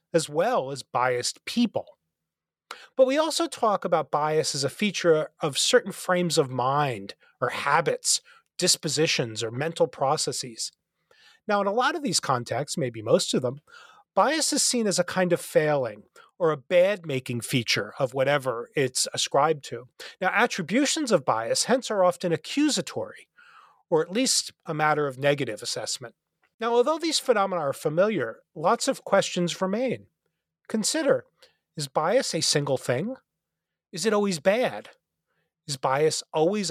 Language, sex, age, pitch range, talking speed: English, male, 30-49, 145-245 Hz, 150 wpm